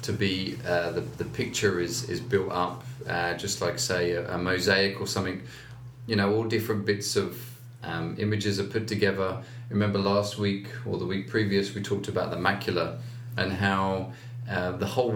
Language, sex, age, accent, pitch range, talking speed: English, male, 30-49, British, 95-120 Hz, 185 wpm